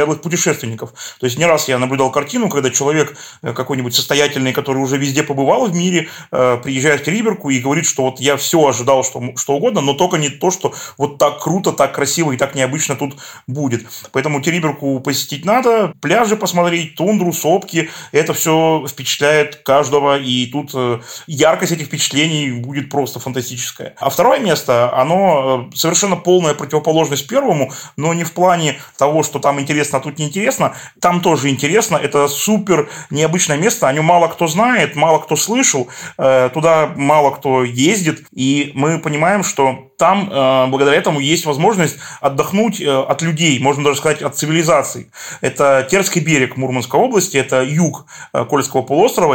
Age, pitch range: 30-49, 140-175 Hz